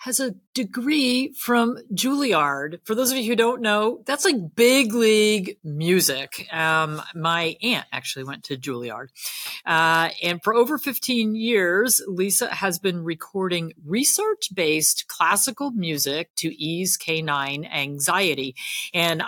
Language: English